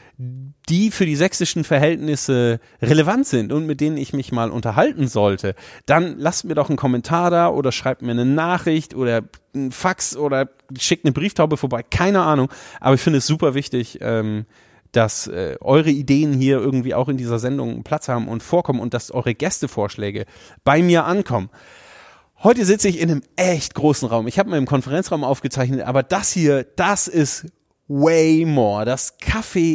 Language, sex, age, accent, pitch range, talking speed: German, male, 30-49, German, 130-165 Hz, 175 wpm